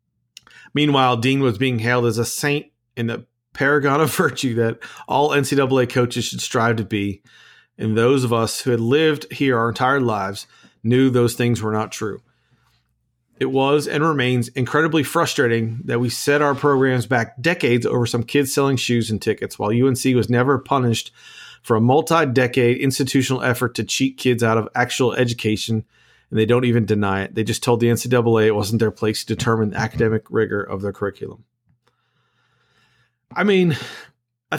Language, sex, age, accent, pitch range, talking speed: English, male, 40-59, American, 115-135 Hz, 175 wpm